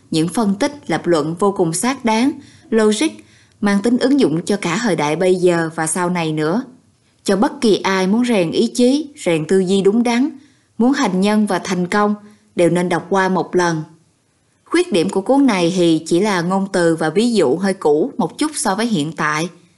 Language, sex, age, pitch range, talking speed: Vietnamese, female, 20-39, 170-230 Hz, 210 wpm